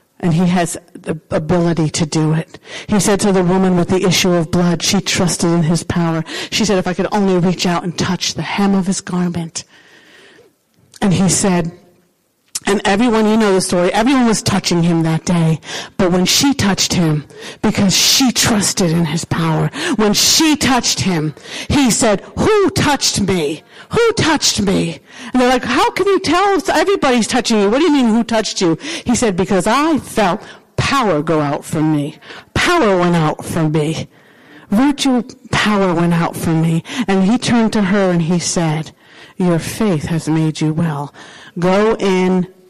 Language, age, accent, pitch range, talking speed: English, 50-69, American, 170-250 Hz, 185 wpm